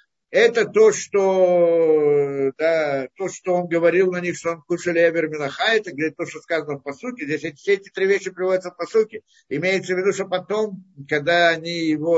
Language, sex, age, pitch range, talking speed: Russian, male, 60-79, 145-190 Hz, 185 wpm